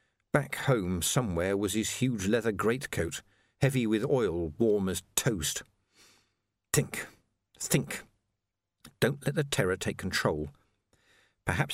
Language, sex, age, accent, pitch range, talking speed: English, male, 50-69, British, 100-140 Hz, 120 wpm